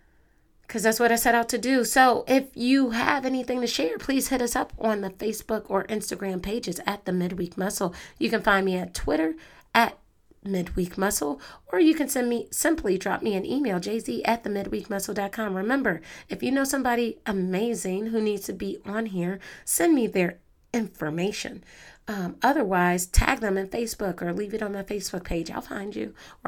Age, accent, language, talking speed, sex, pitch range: 40-59, American, English, 190 wpm, female, 185-230 Hz